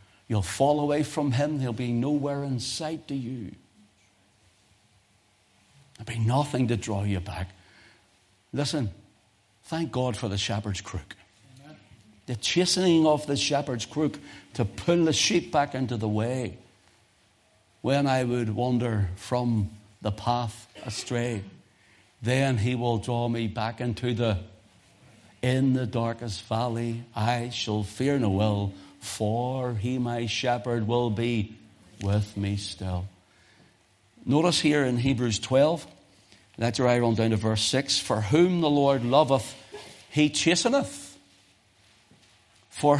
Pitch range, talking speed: 105-145 Hz, 130 wpm